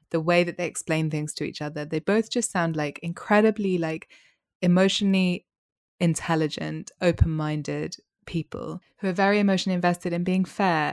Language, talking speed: English, 155 wpm